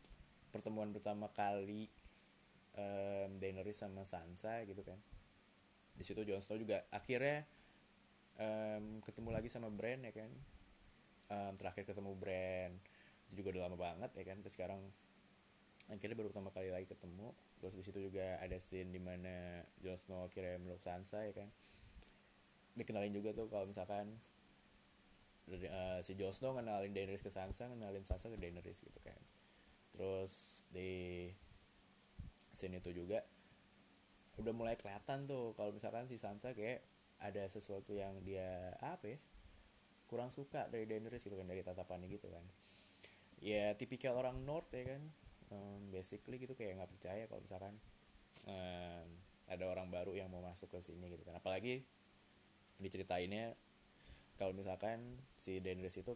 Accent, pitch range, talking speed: native, 90-105 Hz, 145 wpm